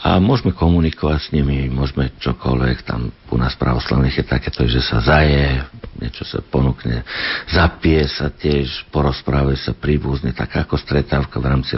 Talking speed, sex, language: 155 wpm, male, Slovak